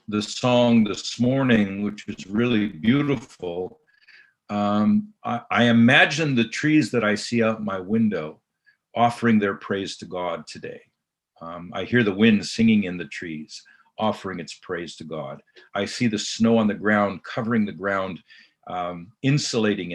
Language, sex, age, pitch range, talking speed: English, male, 50-69, 105-135 Hz, 155 wpm